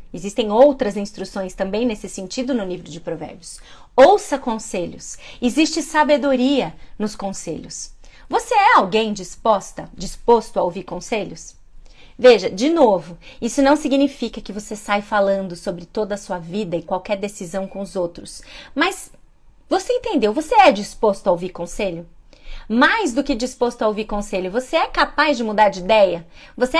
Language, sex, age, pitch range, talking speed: Portuguese, female, 30-49, 205-285 Hz, 155 wpm